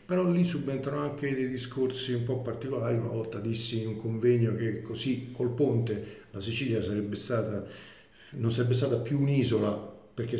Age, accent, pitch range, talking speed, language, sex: 50-69, native, 105-120 Hz, 165 wpm, Italian, male